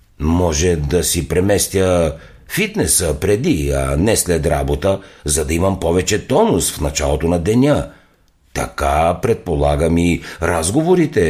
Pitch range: 70-95 Hz